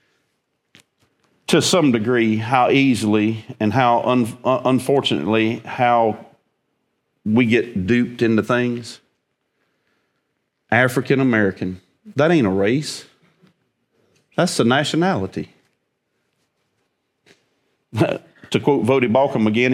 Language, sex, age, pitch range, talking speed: English, male, 40-59, 105-130 Hz, 90 wpm